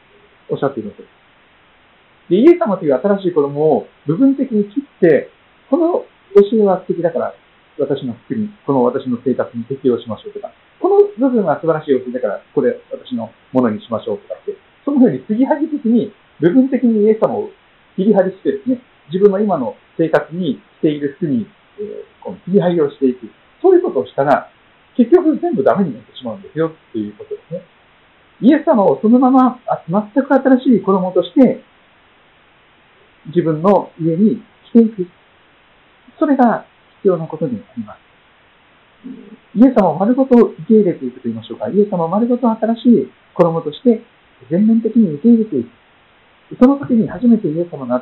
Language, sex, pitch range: Japanese, male, 170-250 Hz